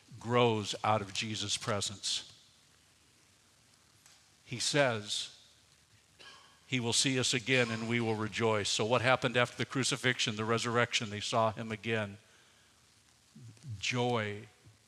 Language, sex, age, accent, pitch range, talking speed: English, male, 60-79, American, 110-135 Hz, 115 wpm